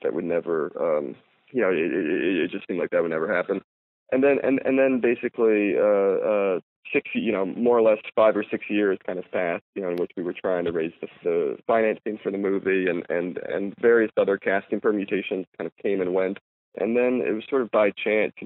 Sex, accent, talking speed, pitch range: male, American, 235 wpm, 95-125 Hz